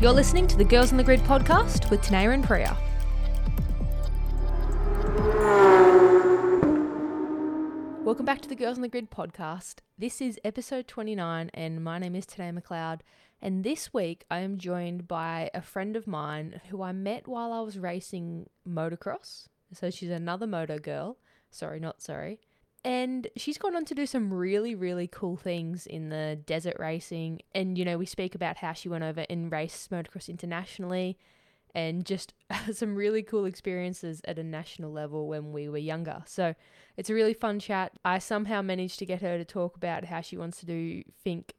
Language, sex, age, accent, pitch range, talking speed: English, female, 20-39, Australian, 170-210 Hz, 175 wpm